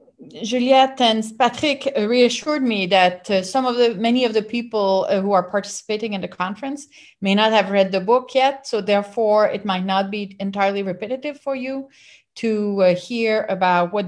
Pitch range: 190-245 Hz